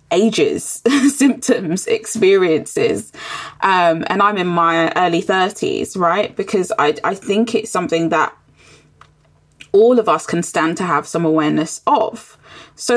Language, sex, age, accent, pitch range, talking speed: English, female, 20-39, British, 175-225 Hz, 135 wpm